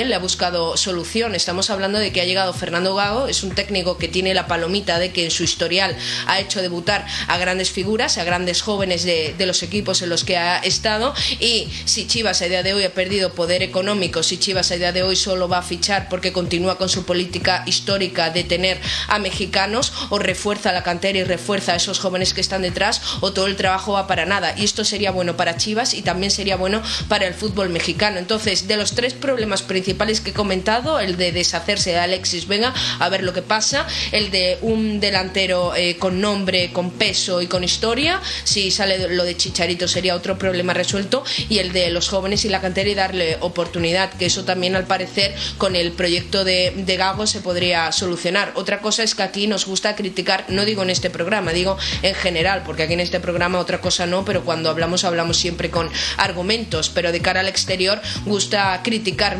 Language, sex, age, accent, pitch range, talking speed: Spanish, female, 20-39, Spanish, 180-200 Hz, 210 wpm